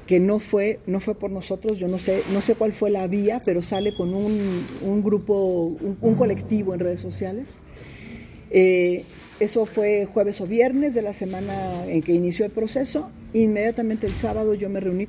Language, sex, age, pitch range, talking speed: Spanish, female, 40-59, 175-205 Hz, 190 wpm